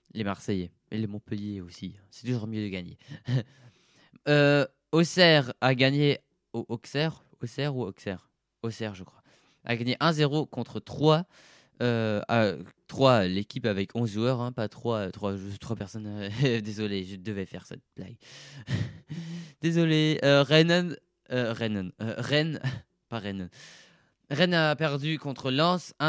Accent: French